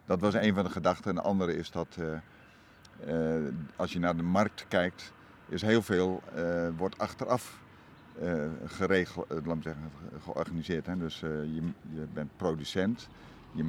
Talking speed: 160 wpm